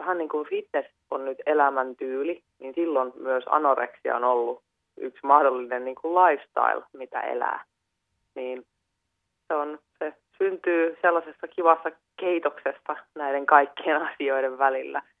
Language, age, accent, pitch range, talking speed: Finnish, 20-39, native, 130-155 Hz, 125 wpm